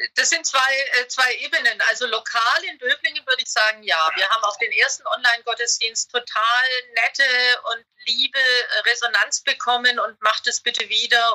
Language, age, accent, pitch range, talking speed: German, 40-59, German, 225-310 Hz, 160 wpm